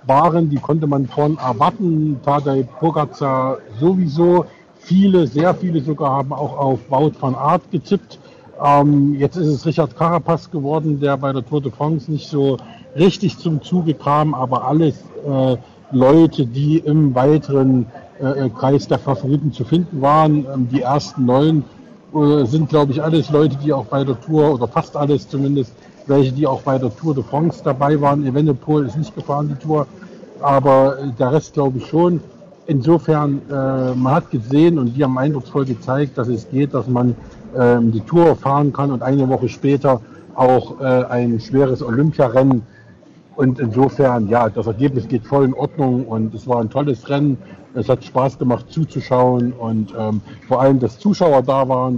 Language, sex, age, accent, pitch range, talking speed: German, male, 60-79, German, 130-155 Hz, 170 wpm